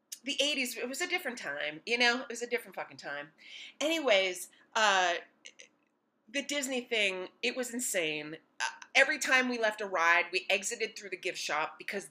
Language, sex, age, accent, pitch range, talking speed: English, female, 30-49, American, 205-285 Hz, 175 wpm